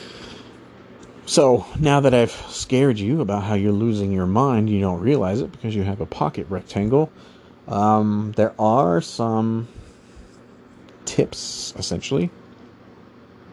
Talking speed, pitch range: 125 wpm, 95-115 Hz